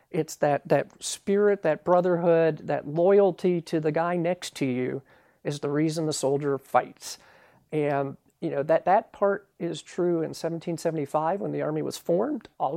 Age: 50-69